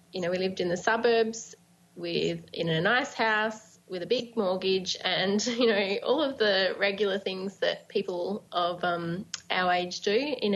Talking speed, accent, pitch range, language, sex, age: 180 wpm, Australian, 175-210 Hz, English, female, 20-39